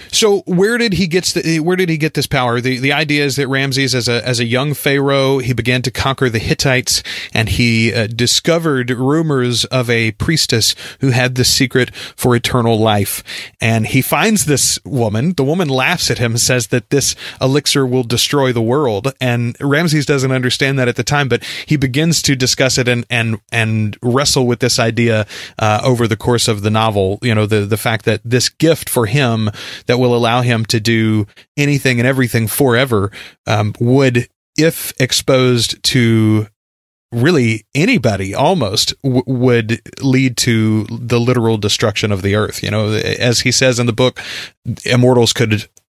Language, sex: English, male